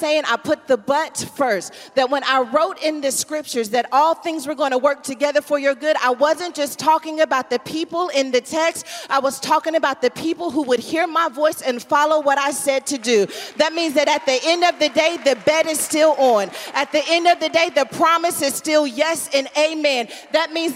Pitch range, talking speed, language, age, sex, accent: 300-360 Hz, 235 wpm, English, 40-59, female, American